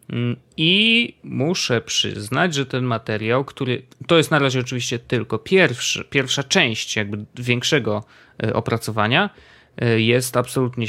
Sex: male